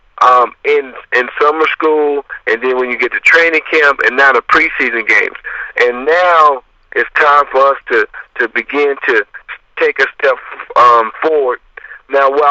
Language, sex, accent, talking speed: English, male, American, 170 wpm